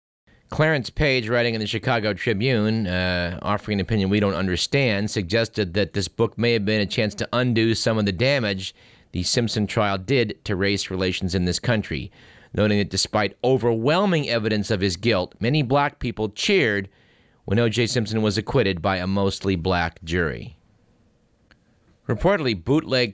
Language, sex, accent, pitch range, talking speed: English, male, American, 100-130 Hz, 165 wpm